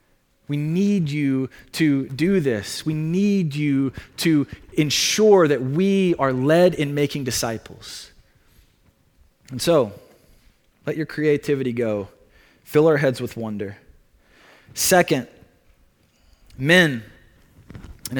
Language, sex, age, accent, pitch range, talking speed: English, male, 20-39, American, 115-175 Hz, 105 wpm